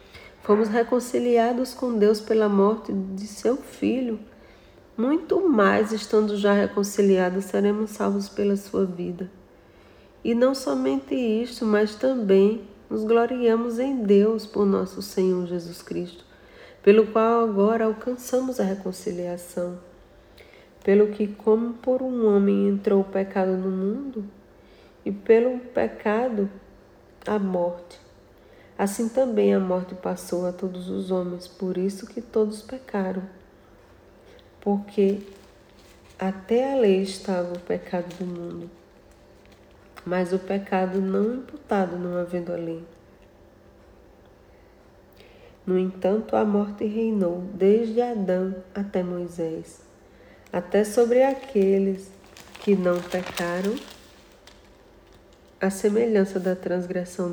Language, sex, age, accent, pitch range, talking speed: Portuguese, female, 40-59, Brazilian, 185-225 Hz, 110 wpm